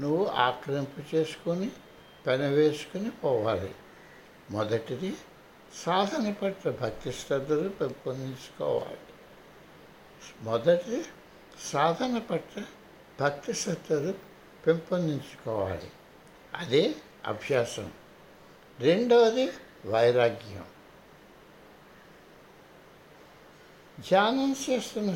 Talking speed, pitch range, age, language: 50 wpm, 140-200 Hz, 60-79, Telugu